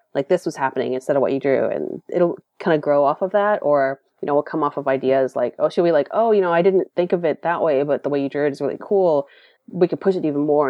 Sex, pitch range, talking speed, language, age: female, 135-175 Hz, 310 wpm, English, 30-49